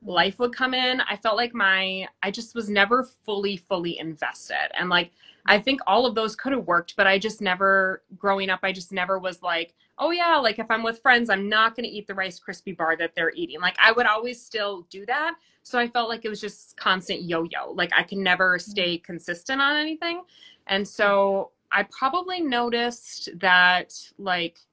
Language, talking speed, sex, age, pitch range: English, 205 wpm, female, 20-39, 175-225 Hz